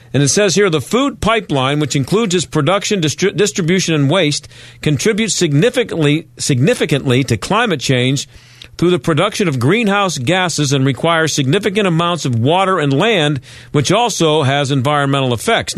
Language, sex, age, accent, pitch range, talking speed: English, male, 50-69, American, 125-165 Hz, 150 wpm